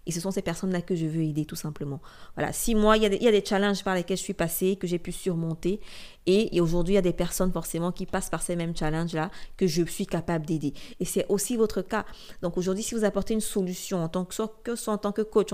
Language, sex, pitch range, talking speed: French, female, 170-195 Hz, 275 wpm